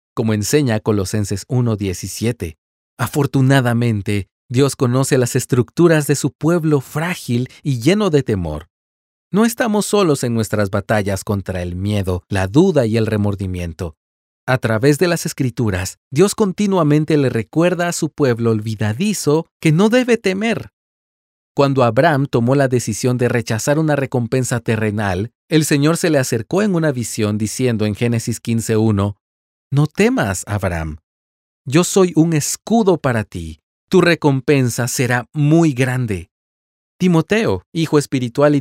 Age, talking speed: 40-59, 135 wpm